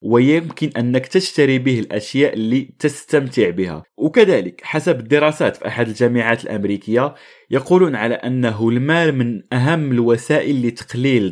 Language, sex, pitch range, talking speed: Arabic, male, 115-145 Hz, 120 wpm